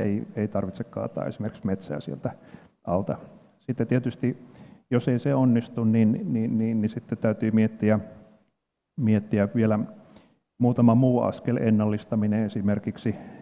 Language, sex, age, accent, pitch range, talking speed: Finnish, male, 40-59, native, 100-120 Hz, 125 wpm